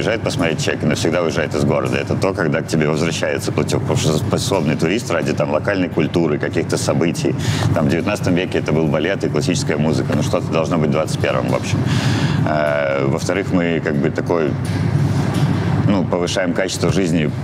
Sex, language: male, Russian